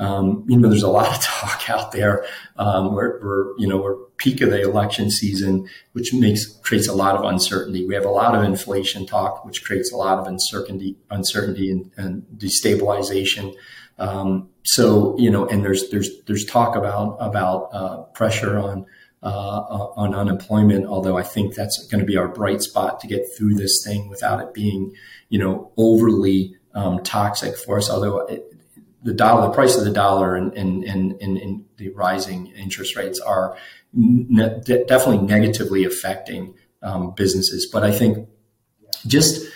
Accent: American